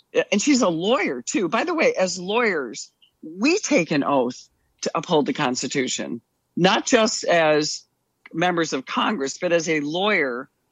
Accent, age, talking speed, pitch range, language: American, 50-69, 155 wpm, 145-210 Hz, English